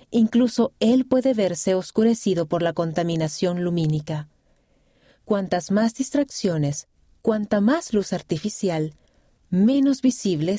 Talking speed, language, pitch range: 100 wpm, Spanish, 165-225 Hz